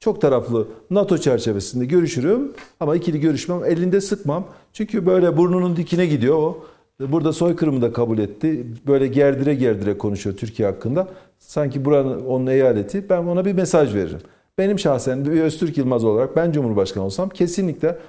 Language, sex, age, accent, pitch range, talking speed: Turkish, male, 50-69, native, 130-185 Hz, 150 wpm